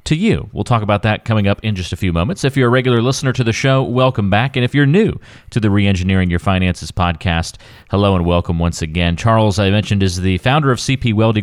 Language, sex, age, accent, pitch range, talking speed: English, male, 30-49, American, 90-115 Hz, 245 wpm